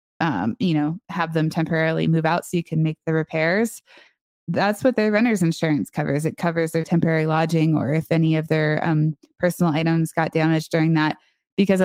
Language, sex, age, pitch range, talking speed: English, female, 20-39, 160-195 Hz, 190 wpm